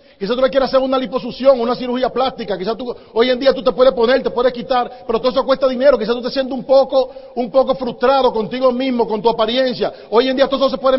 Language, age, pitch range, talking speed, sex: Spanish, 40-59, 225-270 Hz, 260 wpm, male